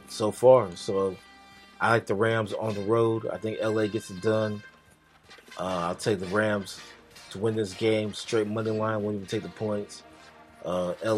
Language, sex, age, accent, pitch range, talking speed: English, male, 30-49, American, 100-115 Hz, 185 wpm